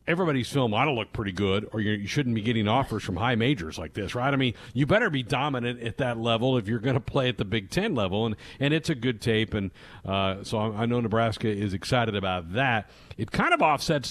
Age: 50-69